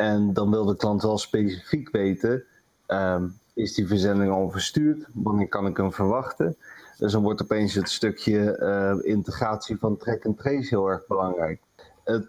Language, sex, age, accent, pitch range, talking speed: Dutch, male, 30-49, Dutch, 95-105 Hz, 170 wpm